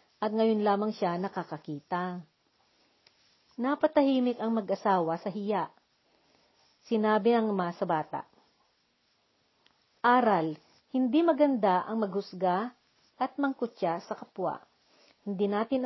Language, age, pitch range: Filipino, 40-59, 185-240 Hz